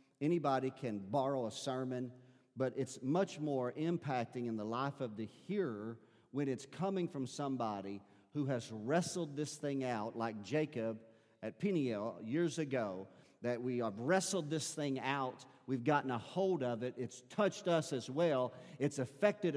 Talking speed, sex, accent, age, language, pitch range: 165 wpm, male, American, 50-69, English, 125-160 Hz